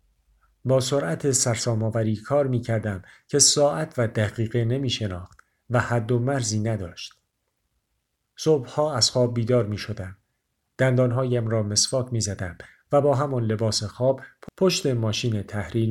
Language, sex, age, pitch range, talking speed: Persian, male, 50-69, 110-130 Hz, 120 wpm